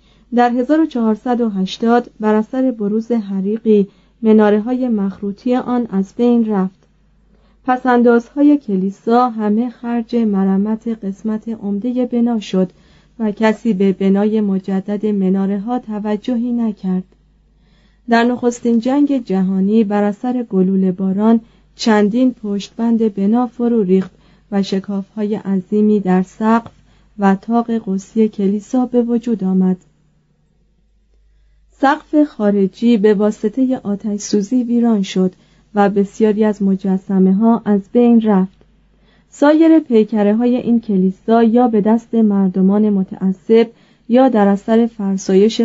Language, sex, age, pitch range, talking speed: Persian, female, 30-49, 195-235 Hz, 115 wpm